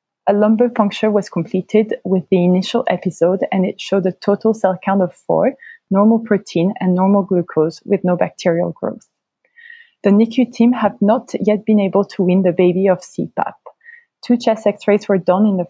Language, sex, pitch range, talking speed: English, female, 185-220 Hz, 185 wpm